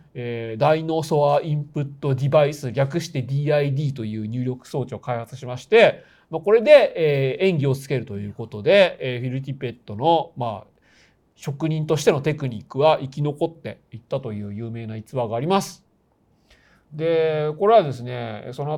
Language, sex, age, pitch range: Japanese, male, 40-59, 115-160 Hz